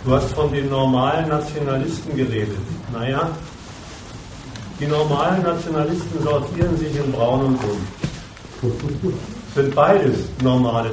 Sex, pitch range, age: male, 125-165 Hz, 40-59